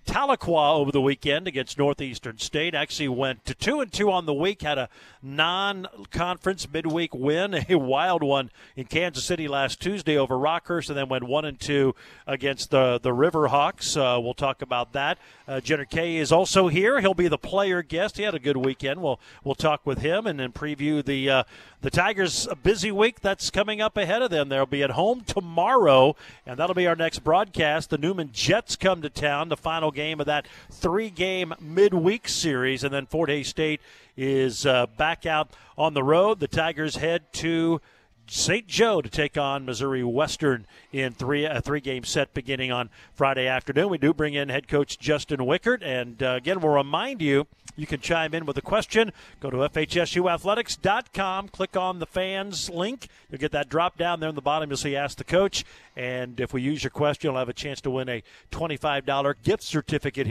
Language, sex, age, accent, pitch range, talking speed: English, male, 50-69, American, 135-170 Hz, 200 wpm